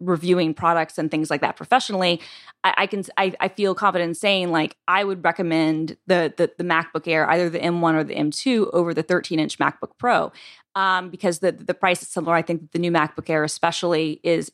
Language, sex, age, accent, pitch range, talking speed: English, female, 20-39, American, 160-190 Hz, 215 wpm